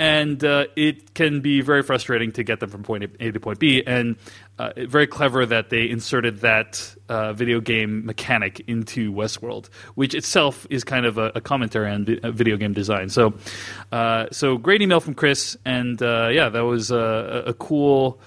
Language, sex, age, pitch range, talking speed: English, male, 30-49, 115-165 Hz, 185 wpm